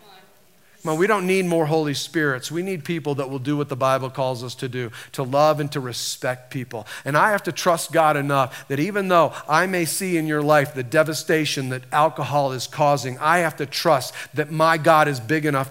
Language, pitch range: Japanese, 135-160 Hz